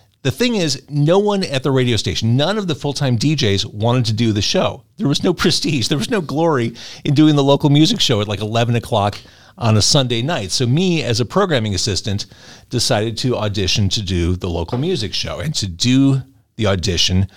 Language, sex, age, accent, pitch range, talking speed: English, male, 40-59, American, 100-130 Hz, 210 wpm